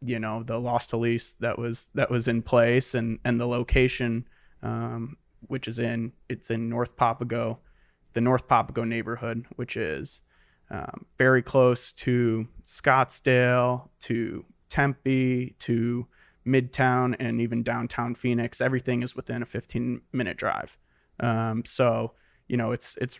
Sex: male